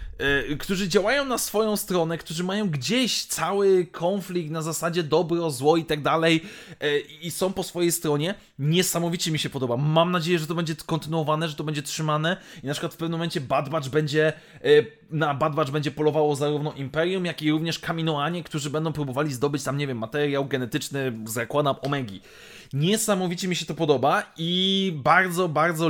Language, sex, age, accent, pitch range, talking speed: Polish, male, 20-39, native, 155-200 Hz, 170 wpm